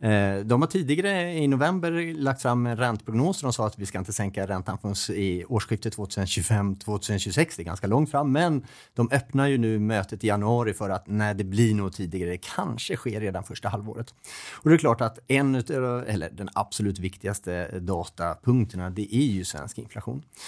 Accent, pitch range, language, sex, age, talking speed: Norwegian, 100-140 Hz, Swedish, male, 30-49, 190 wpm